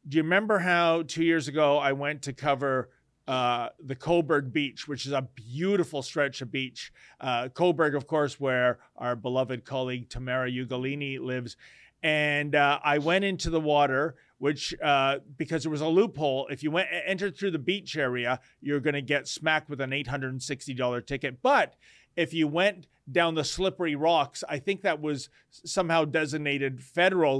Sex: male